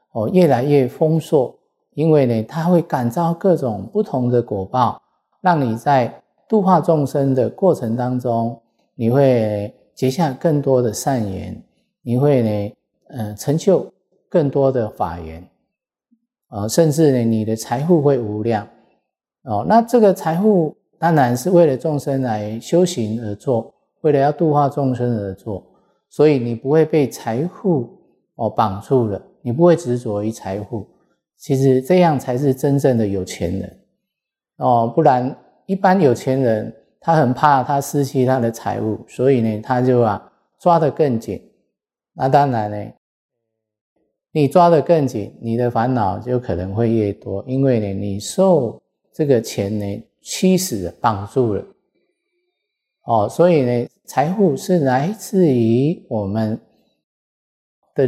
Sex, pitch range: male, 115-160 Hz